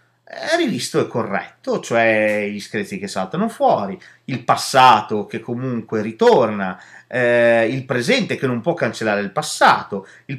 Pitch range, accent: 105-130 Hz, native